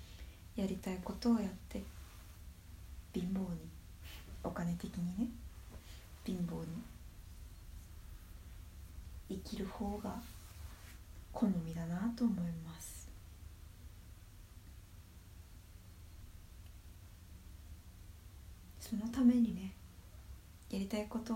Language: Japanese